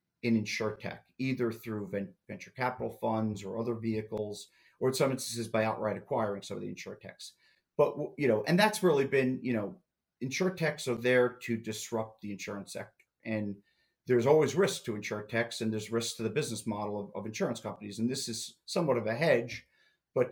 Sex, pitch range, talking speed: male, 110-120 Hz, 200 wpm